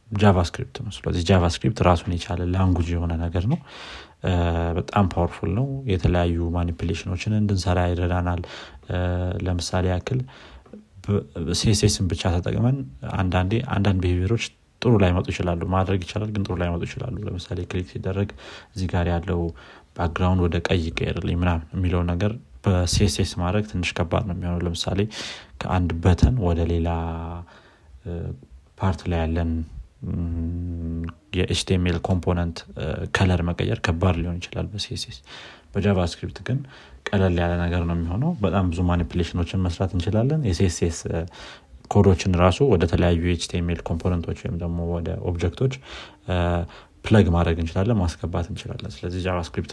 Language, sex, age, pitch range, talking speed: Amharic, male, 30-49, 85-100 Hz, 100 wpm